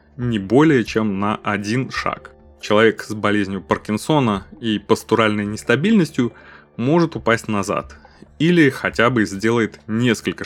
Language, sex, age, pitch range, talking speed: Russian, male, 20-39, 100-125 Hz, 120 wpm